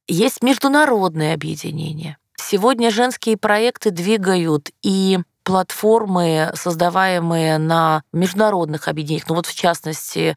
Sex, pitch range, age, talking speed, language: female, 160-210 Hz, 20-39, 100 wpm, Russian